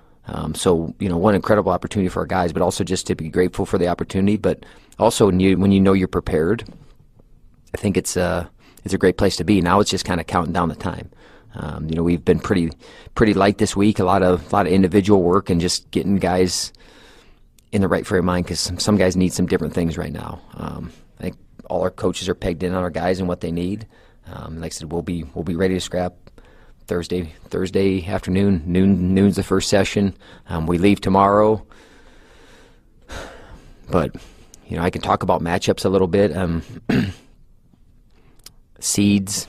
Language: English